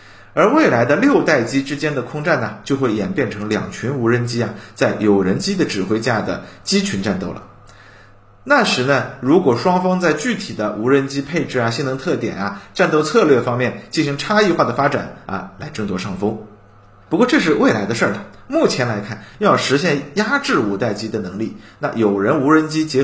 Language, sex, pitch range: Chinese, male, 105-155 Hz